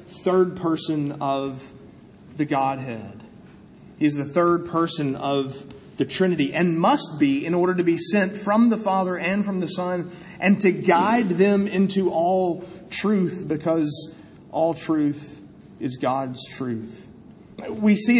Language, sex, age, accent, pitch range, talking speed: English, male, 30-49, American, 145-190 Hz, 140 wpm